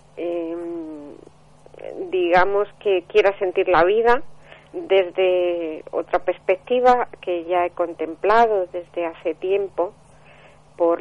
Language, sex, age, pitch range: Spanish, female, 40-59, 180-215 Hz